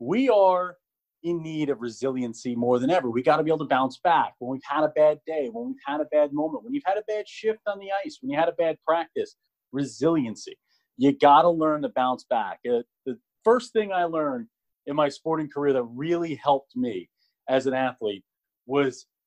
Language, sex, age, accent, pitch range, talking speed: English, male, 30-49, American, 135-180 Hz, 215 wpm